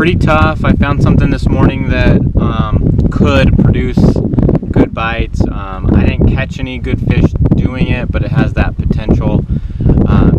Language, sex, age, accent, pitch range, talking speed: English, male, 30-49, American, 105-135 Hz, 160 wpm